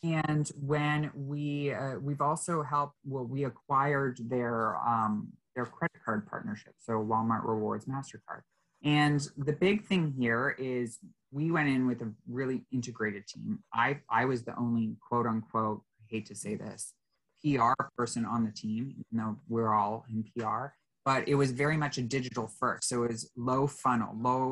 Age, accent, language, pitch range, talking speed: 20-39, American, English, 115-140 Hz, 175 wpm